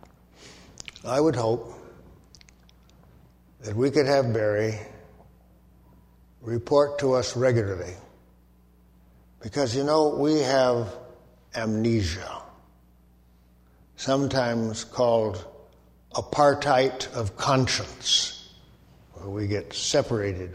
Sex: male